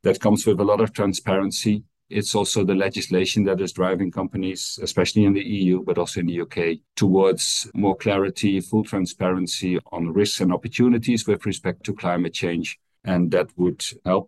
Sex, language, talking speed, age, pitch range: male, English, 175 wpm, 50-69, 90-110 Hz